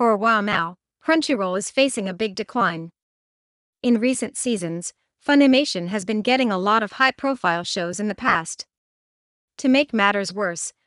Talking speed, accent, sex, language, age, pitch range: 160 wpm, American, female, English, 40-59, 195-245 Hz